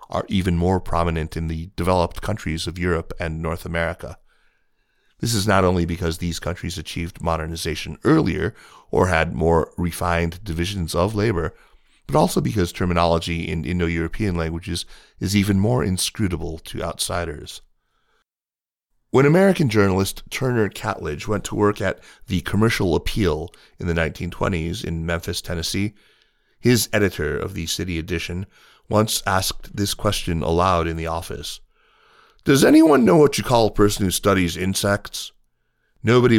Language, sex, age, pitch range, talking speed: English, male, 30-49, 85-105 Hz, 145 wpm